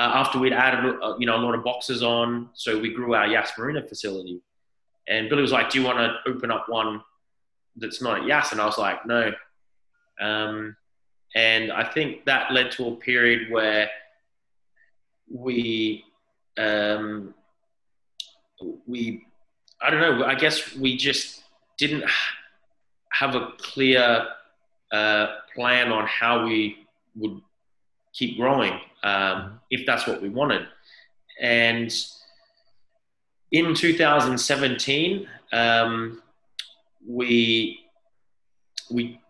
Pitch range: 110-135 Hz